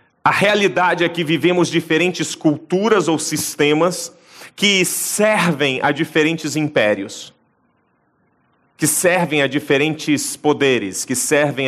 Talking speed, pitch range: 110 wpm, 150-185 Hz